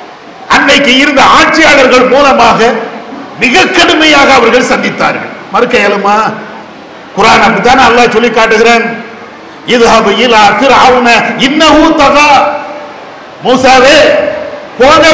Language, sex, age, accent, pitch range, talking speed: English, male, 50-69, Indian, 250-310 Hz, 45 wpm